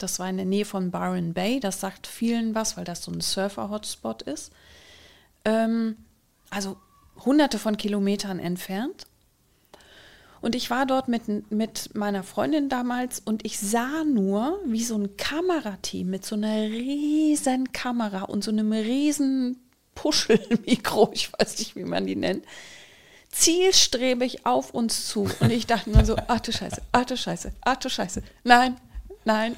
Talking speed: 160 wpm